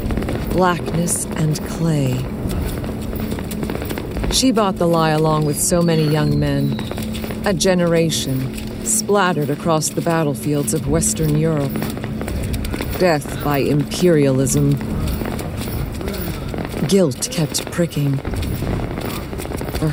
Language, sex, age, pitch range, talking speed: English, female, 40-59, 130-170 Hz, 85 wpm